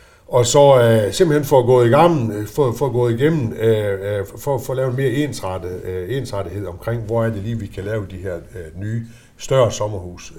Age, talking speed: 60-79, 220 wpm